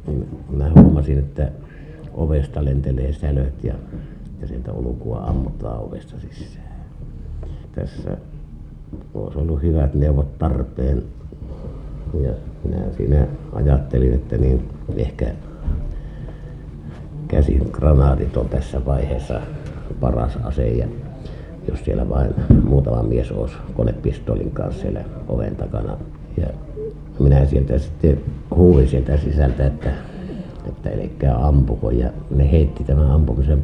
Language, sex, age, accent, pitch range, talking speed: Finnish, male, 60-79, native, 65-75 Hz, 105 wpm